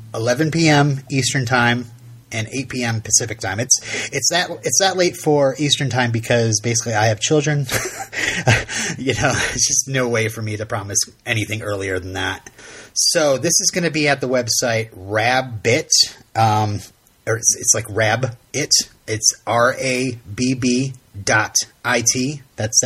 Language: English